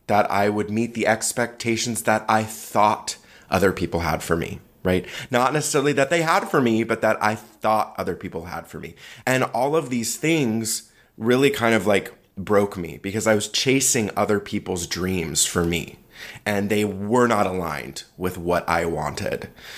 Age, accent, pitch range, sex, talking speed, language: 20-39, American, 95-115 Hz, male, 180 wpm, English